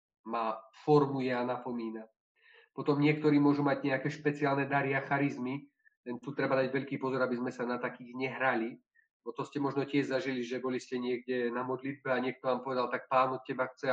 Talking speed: 195 wpm